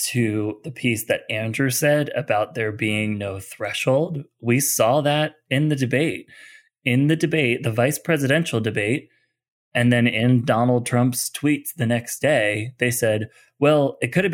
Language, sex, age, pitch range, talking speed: English, male, 20-39, 110-140 Hz, 165 wpm